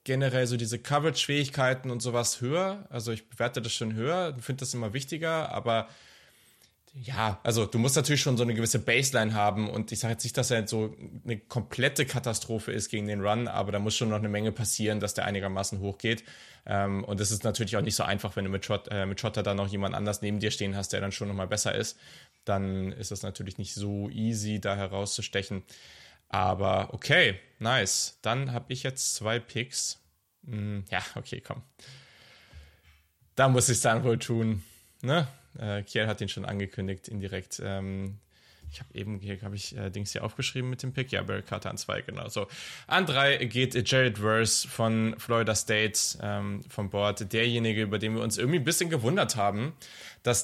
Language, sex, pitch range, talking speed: German, male, 100-125 Hz, 195 wpm